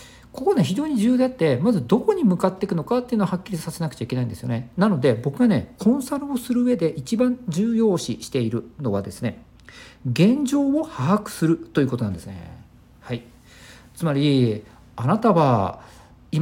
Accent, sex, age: native, male, 50-69